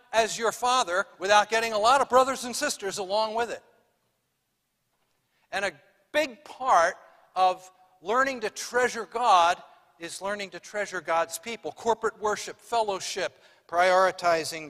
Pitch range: 150-200 Hz